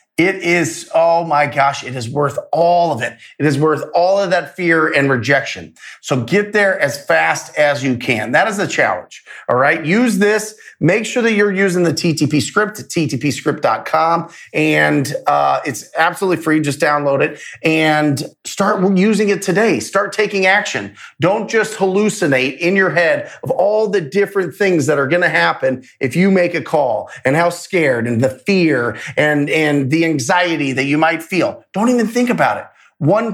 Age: 30-49